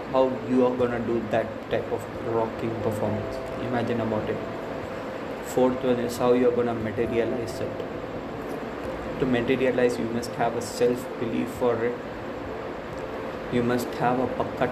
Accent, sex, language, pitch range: Indian, male, English, 120-130 Hz